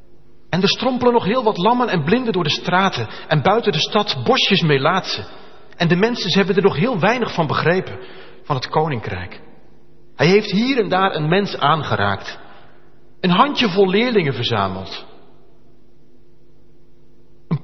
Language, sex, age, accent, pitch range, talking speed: Dutch, male, 40-59, Dutch, 125-205 Hz, 155 wpm